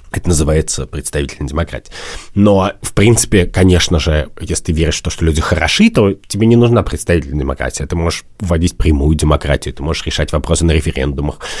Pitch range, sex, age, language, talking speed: 80-105 Hz, male, 30-49, Russian, 175 wpm